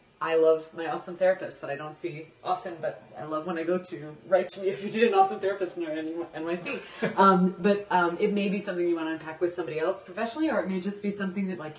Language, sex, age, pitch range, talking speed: English, female, 30-49, 165-215 Hz, 255 wpm